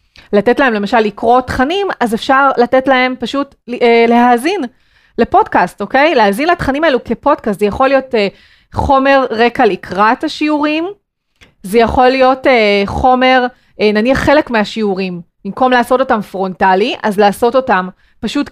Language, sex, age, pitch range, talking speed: Hebrew, female, 30-49, 210-270 Hz, 135 wpm